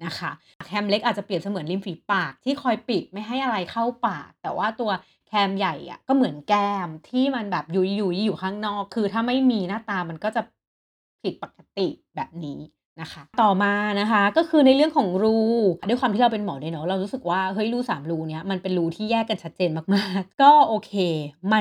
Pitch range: 180-235 Hz